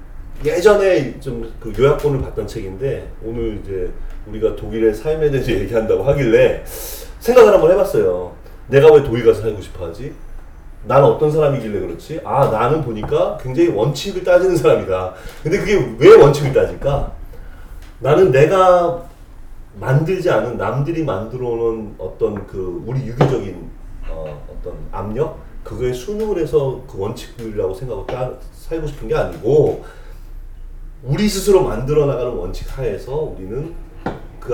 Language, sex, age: Korean, male, 30-49